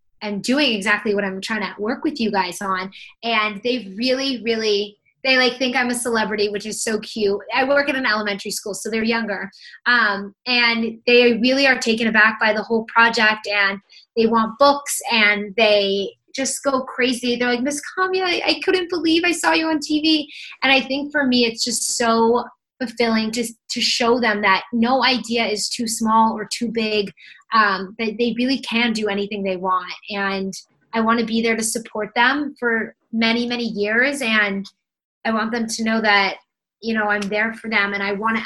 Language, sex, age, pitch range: English, female, 20-39, 205-240 Hz